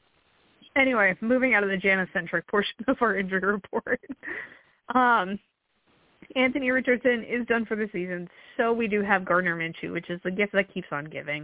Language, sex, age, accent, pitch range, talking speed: English, female, 20-39, American, 185-230 Hz, 175 wpm